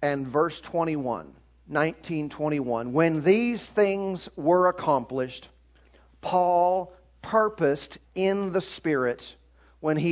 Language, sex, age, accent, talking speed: English, male, 40-59, American, 100 wpm